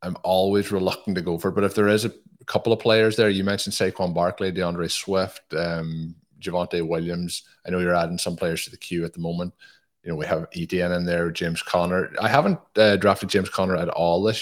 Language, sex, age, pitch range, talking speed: English, male, 20-39, 85-100 Hz, 230 wpm